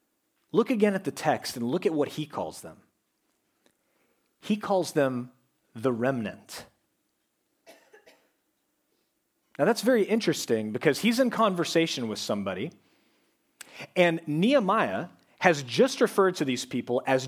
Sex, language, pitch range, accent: male, English, 130-190 Hz, American